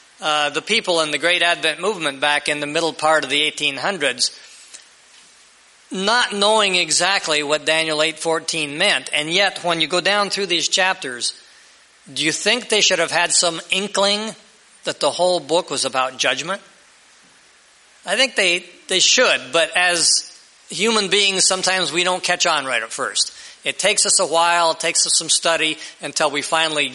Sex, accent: male, American